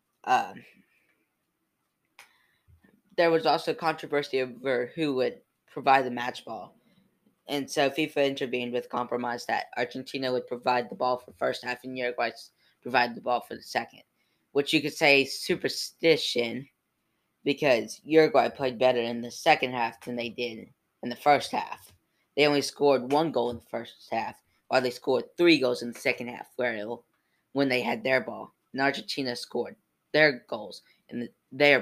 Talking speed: 170 wpm